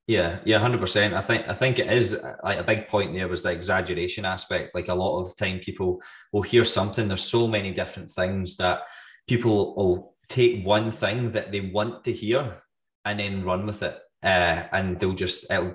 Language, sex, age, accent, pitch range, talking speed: English, male, 20-39, British, 95-115 Hz, 205 wpm